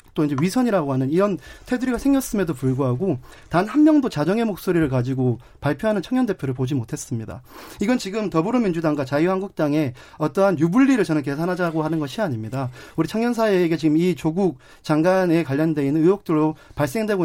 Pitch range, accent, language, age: 140-190 Hz, native, Korean, 40-59